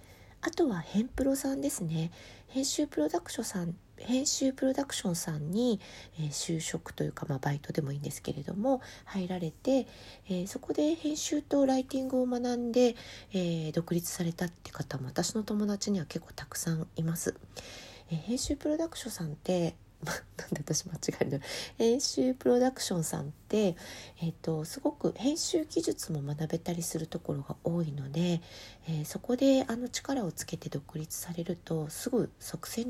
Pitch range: 150-245 Hz